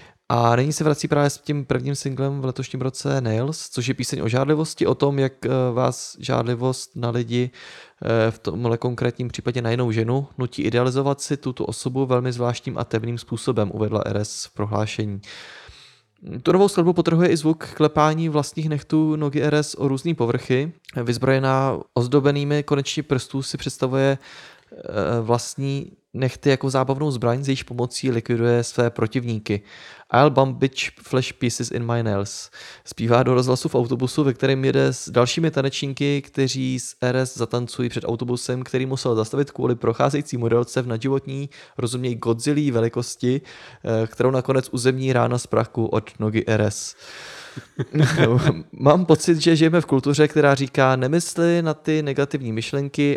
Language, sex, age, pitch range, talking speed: Czech, male, 20-39, 120-145 Hz, 150 wpm